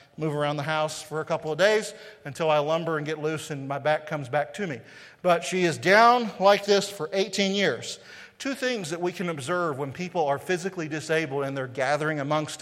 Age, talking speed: 40-59, 220 wpm